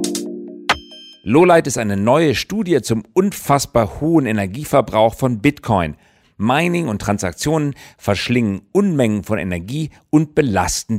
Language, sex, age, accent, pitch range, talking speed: English, male, 50-69, German, 95-145 Hz, 110 wpm